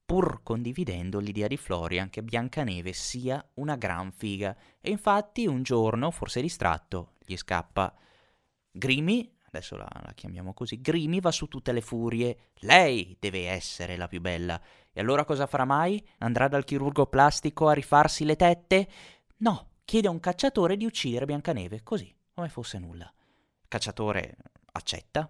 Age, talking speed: 20-39, 150 wpm